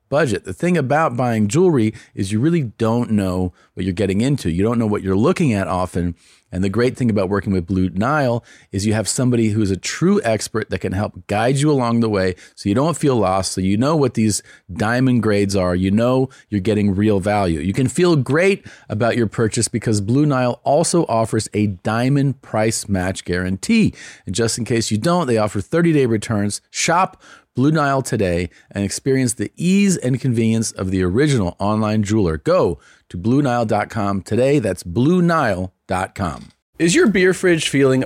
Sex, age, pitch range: male, 40-59, 100-135 Hz